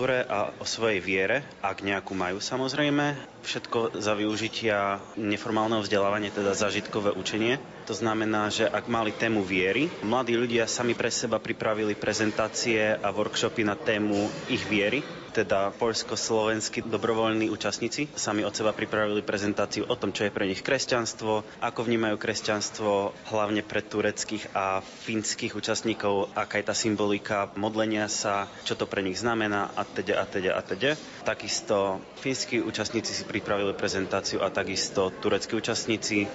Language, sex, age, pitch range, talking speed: Slovak, male, 20-39, 100-110 Hz, 145 wpm